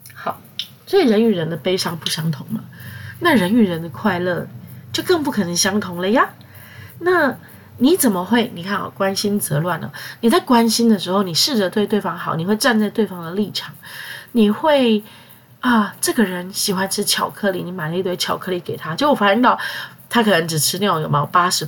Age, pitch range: 20-39, 165-230 Hz